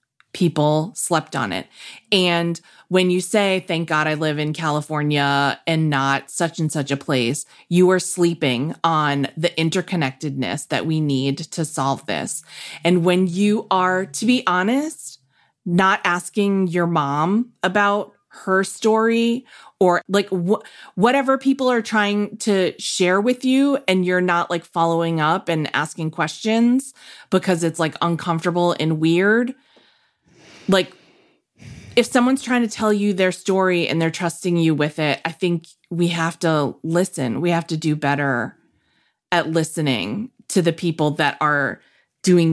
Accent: American